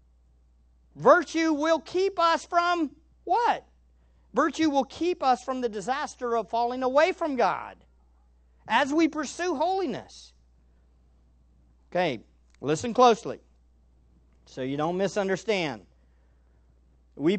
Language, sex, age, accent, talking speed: English, male, 50-69, American, 105 wpm